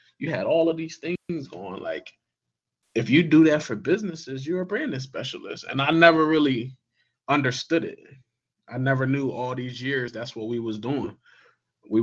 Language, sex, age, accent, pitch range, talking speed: English, male, 20-39, American, 115-140 Hz, 180 wpm